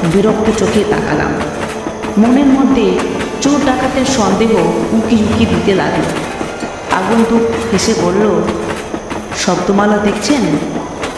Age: 40-59